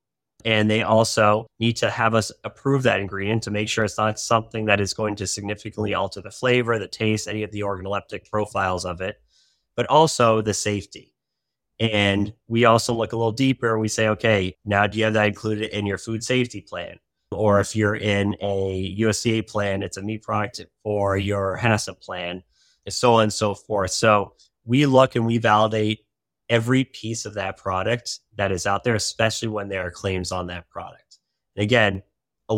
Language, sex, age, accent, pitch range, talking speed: English, male, 30-49, American, 100-115 Hz, 195 wpm